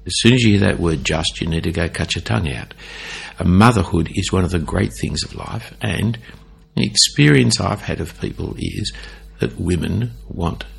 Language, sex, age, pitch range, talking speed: English, male, 60-79, 80-105 Hz, 200 wpm